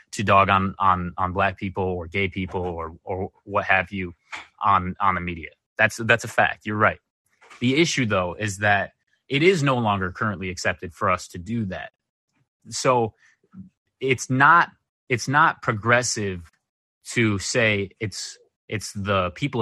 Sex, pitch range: male, 95-120 Hz